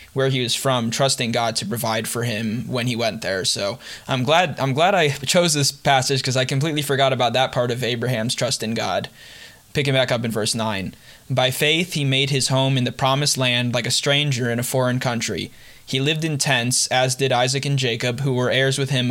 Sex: male